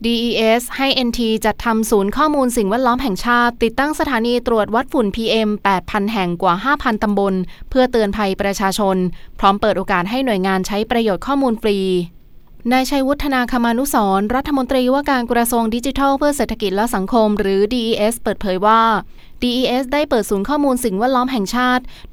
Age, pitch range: 20-39, 205-250 Hz